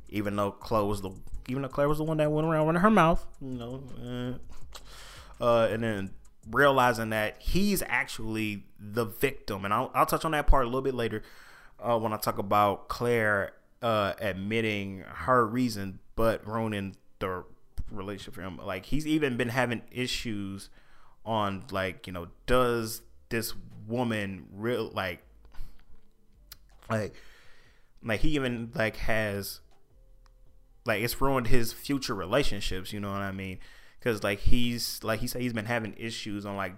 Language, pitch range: English, 100-125 Hz